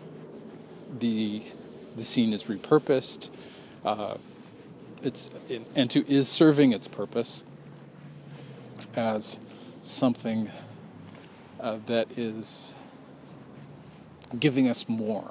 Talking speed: 80 wpm